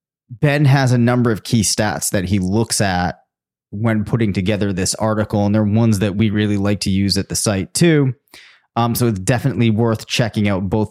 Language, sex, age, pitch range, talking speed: English, male, 30-49, 100-130 Hz, 205 wpm